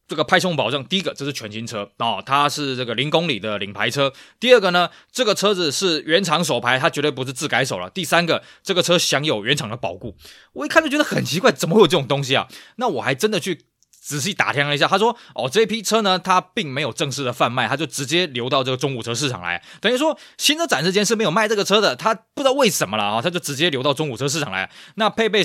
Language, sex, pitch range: Chinese, male, 130-190 Hz